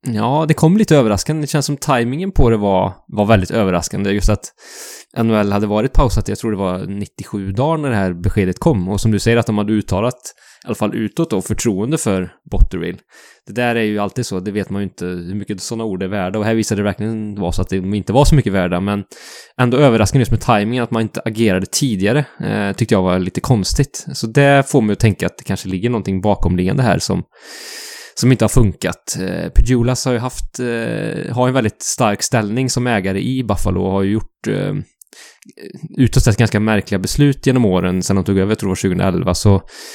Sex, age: male, 20-39